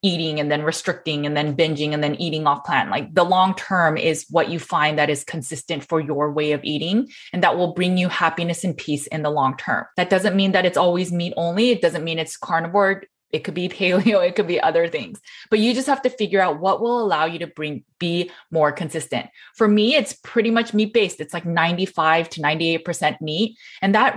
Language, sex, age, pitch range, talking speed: English, female, 20-39, 160-205 Hz, 225 wpm